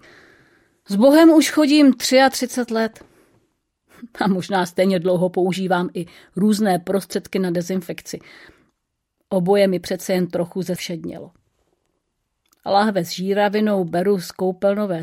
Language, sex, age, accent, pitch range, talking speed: Czech, female, 40-59, native, 175-205 Hz, 110 wpm